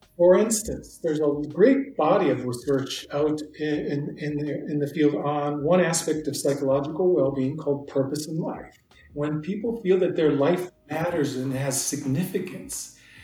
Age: 40-59